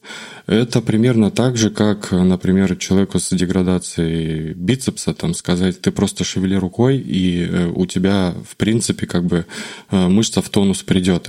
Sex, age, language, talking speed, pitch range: male, 20-39, Russian, 130 wpm, 95-115 Hz